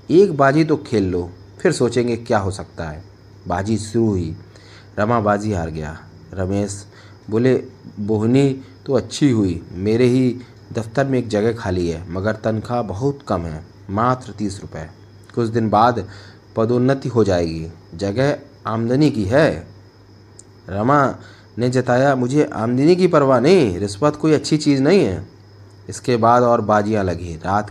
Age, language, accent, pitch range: 30-49, Hindi, native, 100-120 Hz